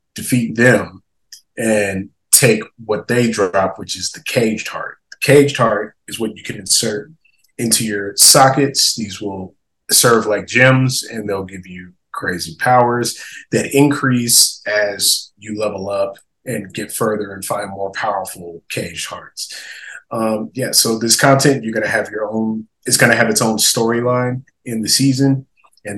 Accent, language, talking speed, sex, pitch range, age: American, English, 160 wpm, male, 100-120 Hz, 20-39